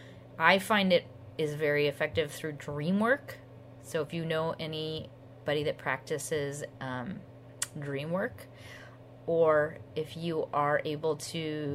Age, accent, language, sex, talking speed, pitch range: 30-49, American, English, female, 130 wpm, 130-165 Hz